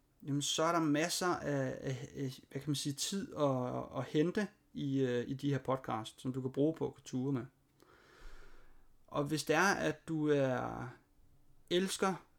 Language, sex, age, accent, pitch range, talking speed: Danish, male, 30-49, native, 140-170 Hz, 175 wpm